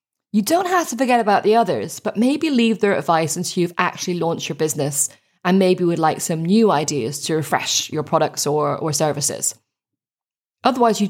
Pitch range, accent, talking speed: 165-220 Hz, British, 190 wpm